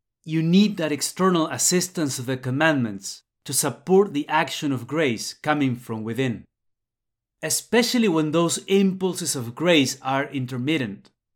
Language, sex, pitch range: English, male, 115-160 Hz